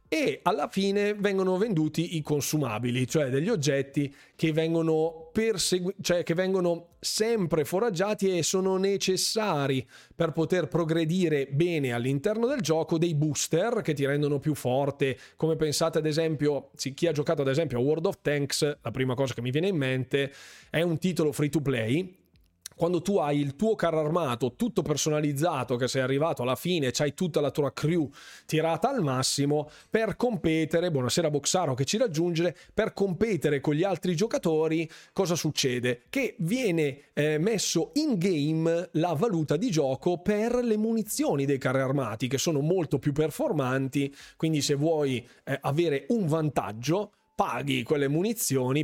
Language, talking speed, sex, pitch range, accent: Italian, 160 wpm, male, 135-175 Hz, native